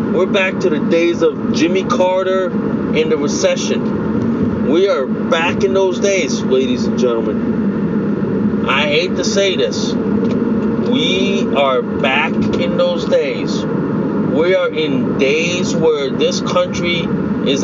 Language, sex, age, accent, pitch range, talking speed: English, male, 40-59, American, 190-235 Hz, 135 wpm